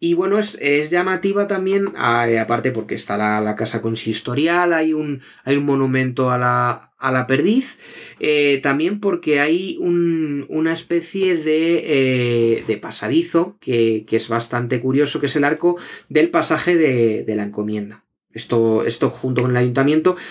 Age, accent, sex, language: 30-49, Spanish, male, Spanish